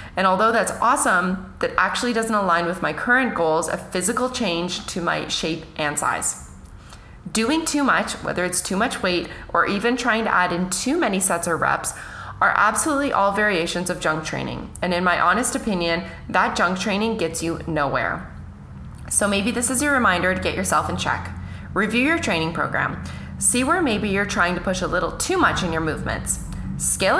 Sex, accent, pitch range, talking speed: female, American, 170-225 Hz, 190 wpm